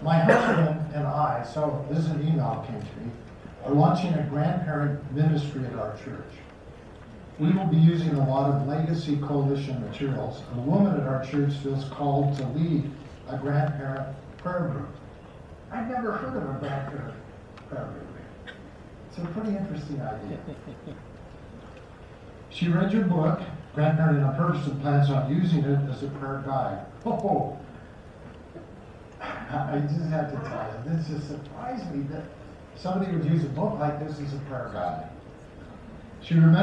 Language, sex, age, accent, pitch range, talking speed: English, male, 50-69, American, 125-155 Hz, 155 wpm